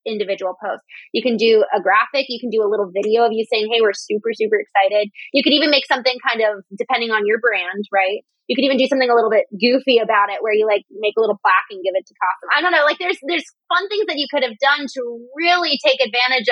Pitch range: 215-280 Hz